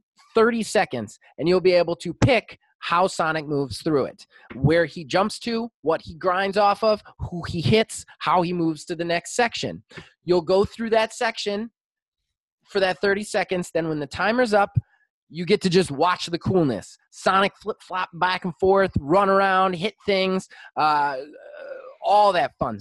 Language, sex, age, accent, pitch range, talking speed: English, male, 20-39, American, 160-205 Hz, 175 wpm